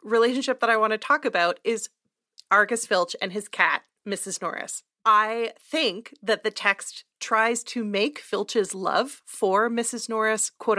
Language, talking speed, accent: English, 160 wpm, American